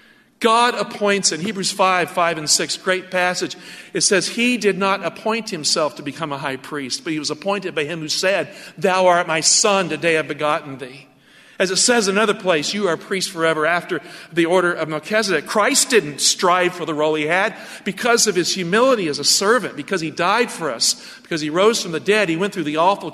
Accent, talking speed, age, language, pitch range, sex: American, 220 wpm, 50-69, English, 155-205 Hz, male